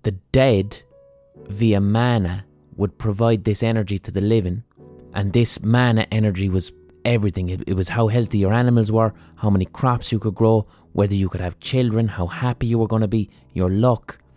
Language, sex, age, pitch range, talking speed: English, male, 30-49, 90-115 Hz, 190 wpm